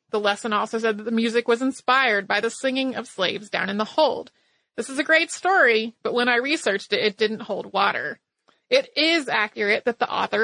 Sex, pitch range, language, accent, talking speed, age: female, 220-270 Hz, English, American, 220 wpm, 30-49